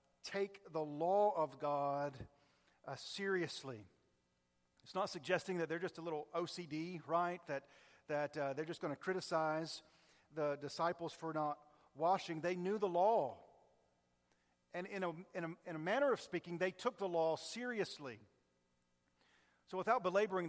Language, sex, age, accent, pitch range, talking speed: English, male, 40-59, American, 150-195 Hz, 150 wpm